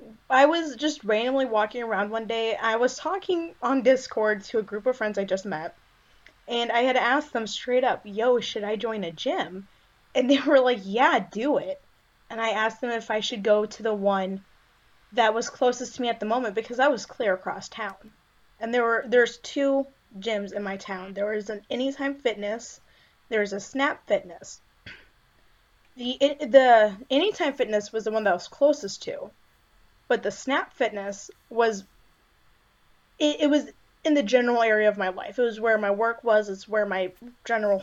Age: 20-39